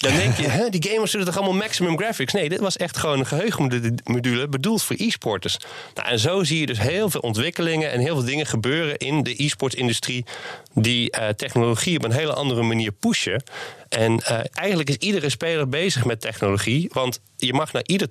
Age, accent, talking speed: 30-49, Dutch, 200 wpm